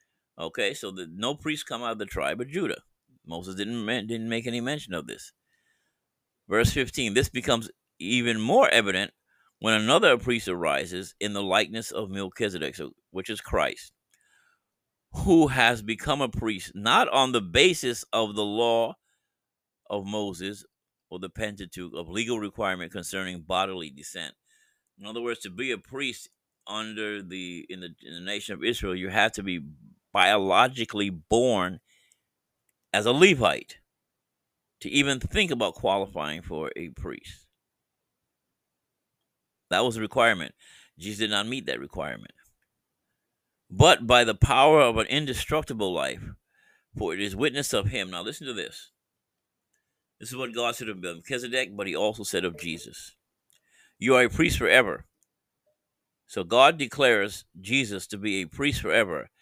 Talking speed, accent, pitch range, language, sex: 150 wpm, American, 95-120 Hz, English, male